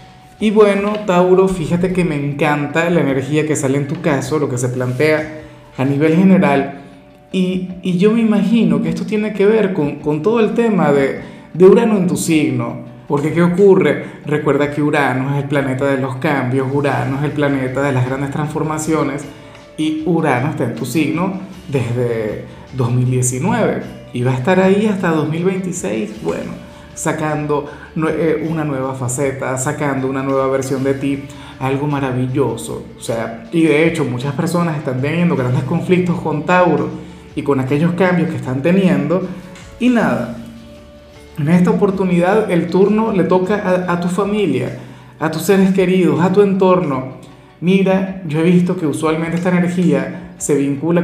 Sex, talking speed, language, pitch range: male, 165 wpm, Spanish, 140-180 Hz